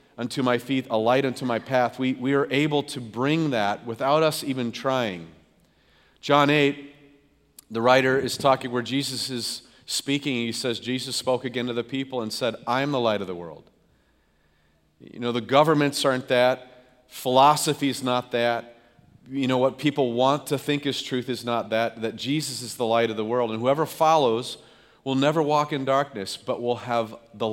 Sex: male